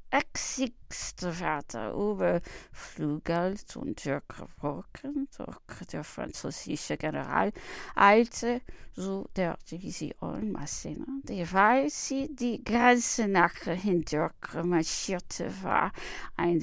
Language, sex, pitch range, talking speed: English, female, 185-250 Hz, 85 wpm